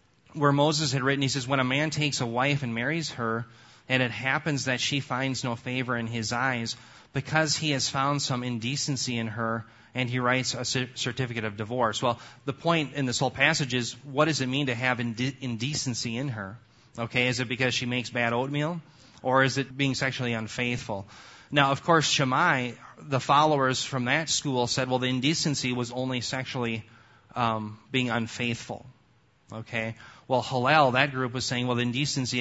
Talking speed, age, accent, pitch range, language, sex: 190 wpm, 30-49, American, 120-140 Hz, English, male